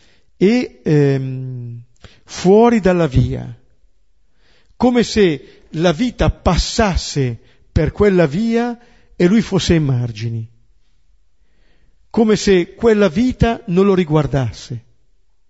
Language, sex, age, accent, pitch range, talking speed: Italian, male, 50-69, native, 125-195 Hz, 95 wpm